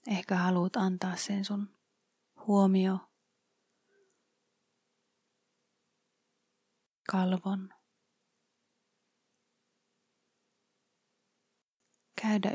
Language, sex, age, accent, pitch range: Finnish, female, 30-49, native, 185-205 Hz